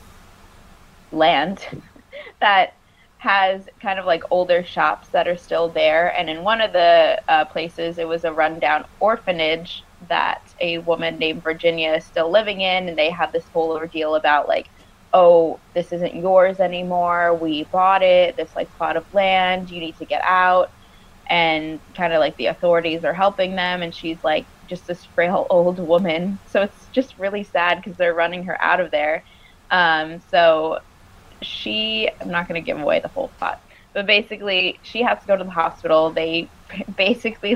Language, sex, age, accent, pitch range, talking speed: English, female, 20-39, American, 160-185 Hz, 175 wpm